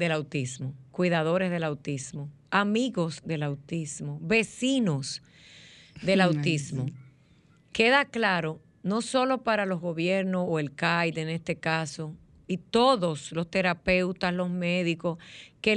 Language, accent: Spanish, American